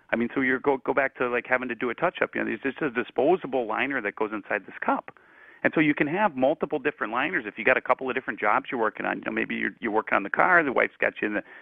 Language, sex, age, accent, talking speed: English, male, 40-59, American, 310 wpm